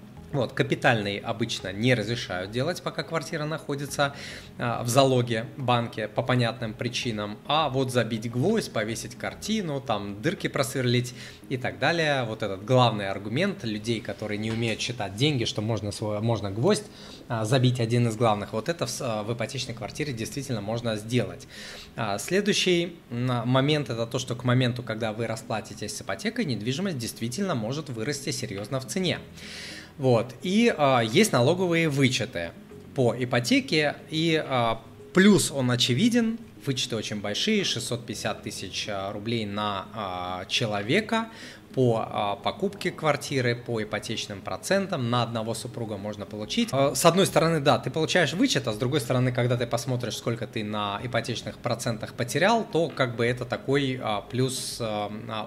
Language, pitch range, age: Russian, 110-145 Hz, 20-39